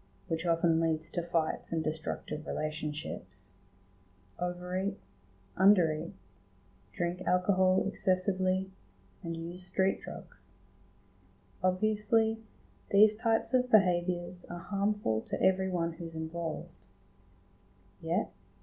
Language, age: English, 30-49